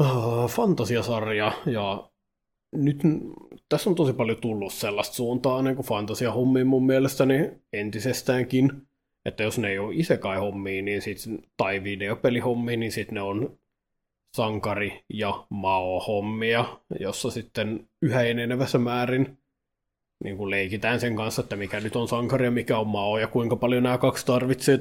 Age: 20-39